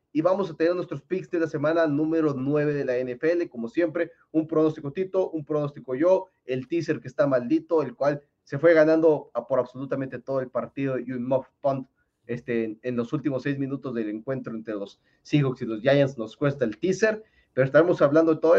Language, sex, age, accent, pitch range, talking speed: Spanish, male, 30-49, Mexican, 130-170 Hz, 205 wpm